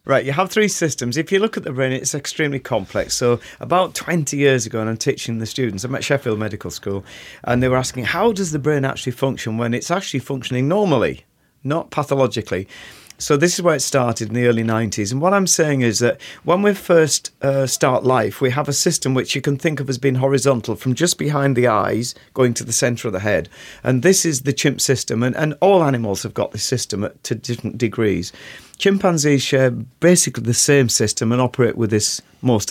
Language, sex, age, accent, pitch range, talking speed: English, male, 40-59, British, 120-150 Hz, 220 wpm